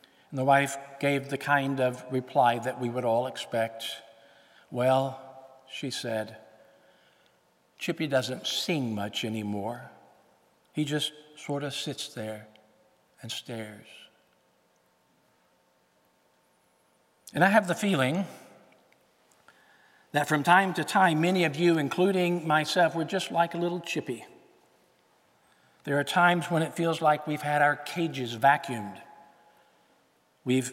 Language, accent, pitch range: English, American, 120-155 Hz